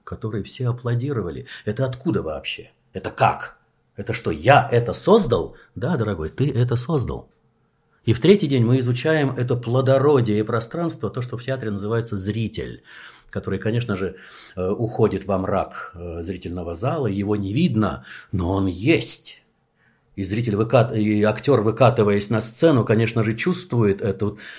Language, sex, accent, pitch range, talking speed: Russian, male, native, 100-125 Hz, 140 wpm